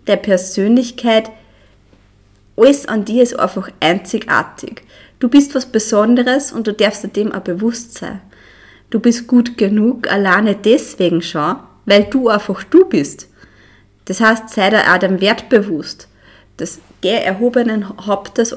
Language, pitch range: German, 175-235 Hz